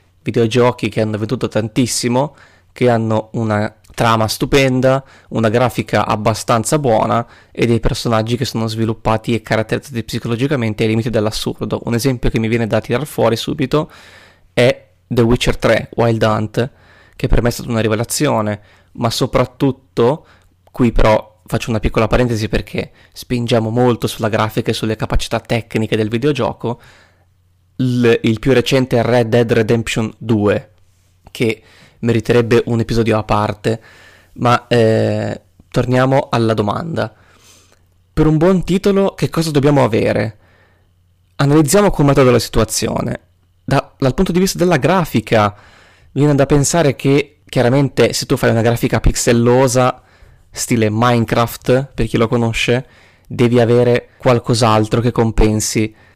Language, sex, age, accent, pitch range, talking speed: Italian, male, 20-39, native, 110-125 Hz, 135 wpm